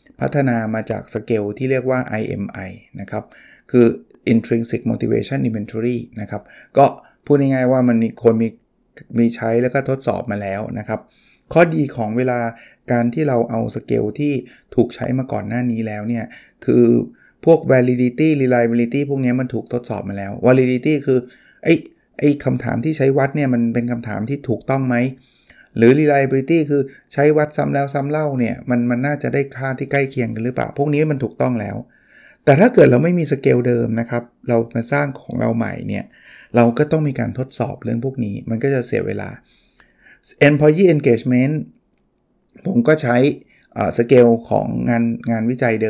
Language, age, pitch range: Thai, 20-39, 115-135 Hz